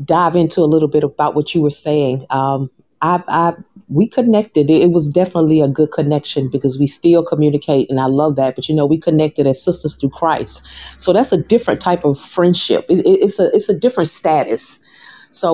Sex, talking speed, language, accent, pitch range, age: female, 210 wpm, English, American, 145-180 Hz, 40-59